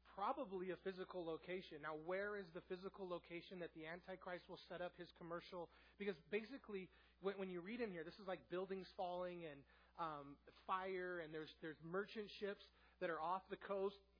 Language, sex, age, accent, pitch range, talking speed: English, male, 30-49, American, 165-195 Hz, 180 wpm